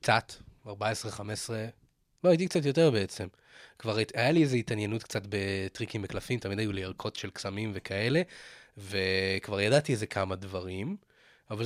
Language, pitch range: Hebrew, 100-130 Hz